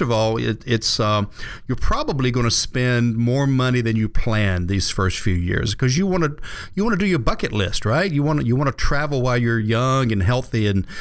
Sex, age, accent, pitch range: male, 40-59, American, 105-130 Hz